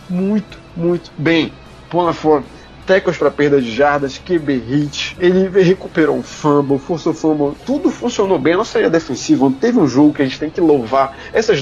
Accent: Brazilian